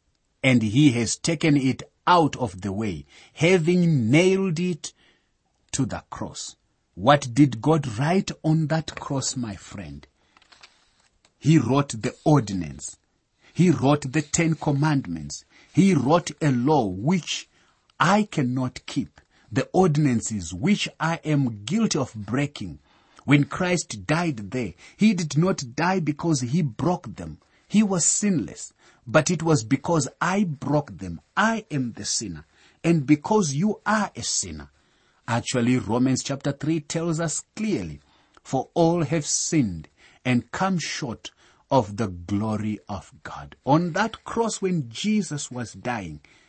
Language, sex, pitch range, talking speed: English, male, 110-170 Hz, 140 wpm